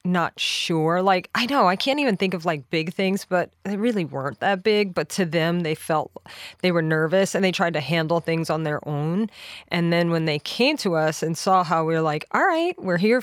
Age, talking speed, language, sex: 20-39, 240 wpm, English, female